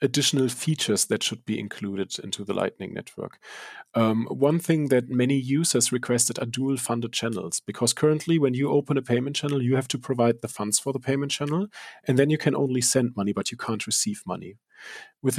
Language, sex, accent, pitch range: English, male, German, 115-140 Hz